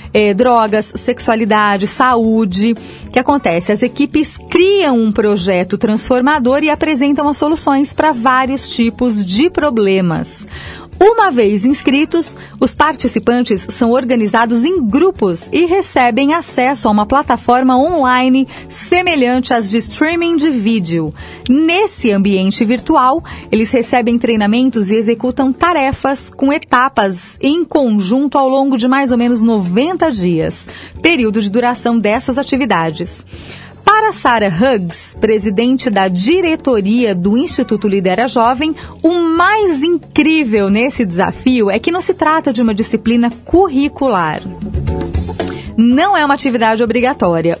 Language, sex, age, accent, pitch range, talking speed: Portuguese, female, 30-49, Brazilian, 215-280 Hz, 125 wpm